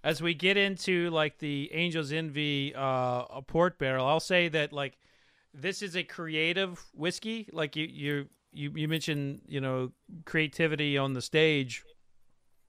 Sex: male